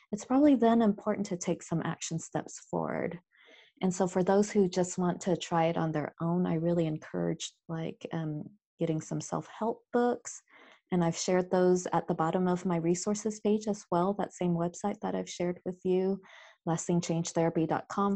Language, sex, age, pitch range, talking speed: English, female, 20-39, 165-195 Hz, 180 wpm